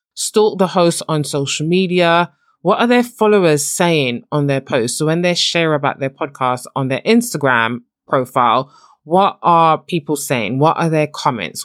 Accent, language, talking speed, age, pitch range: British, English, 170 wpm, 20-39, 140-175 Hz